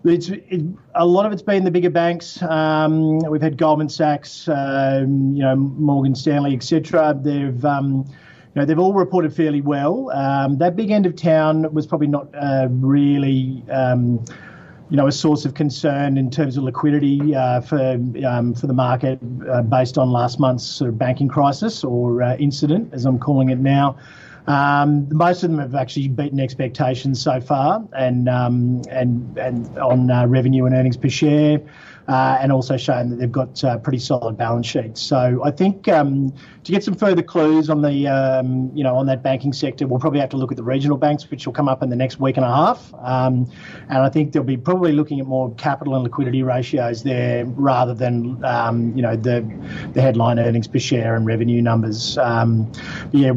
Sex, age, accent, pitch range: male, 40-59, Australian, 125-150 Hz